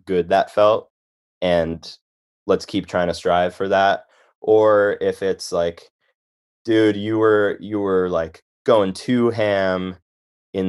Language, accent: English, American